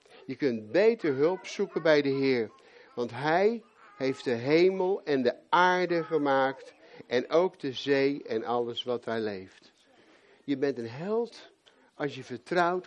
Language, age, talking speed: Dutch, 60-79, 155 wpm